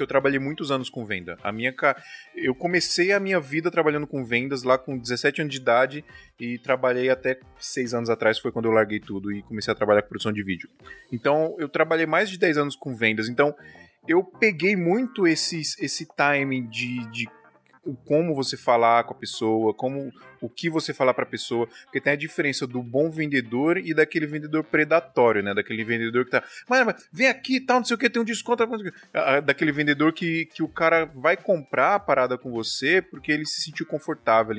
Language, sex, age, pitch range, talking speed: Portuguese, male, 20-39, 120-165 Hz, 205 wpm